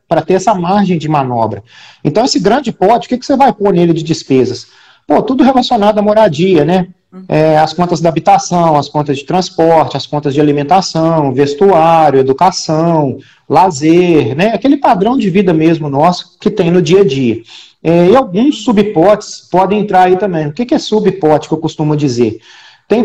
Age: 40-59